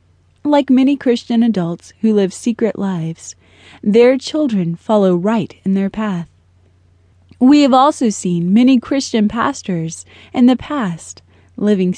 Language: English